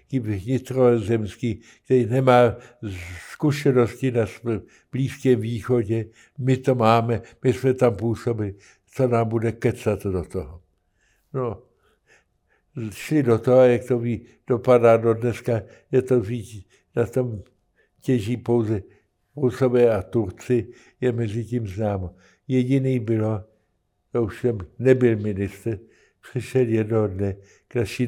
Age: 60-79